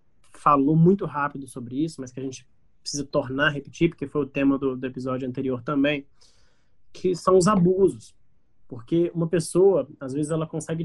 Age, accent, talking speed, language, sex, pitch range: 20-39, Brazilian, 175 wpm, Portuguese, male, 135-170 Hz